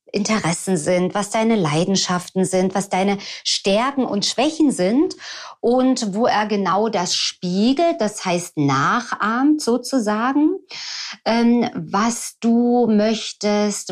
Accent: German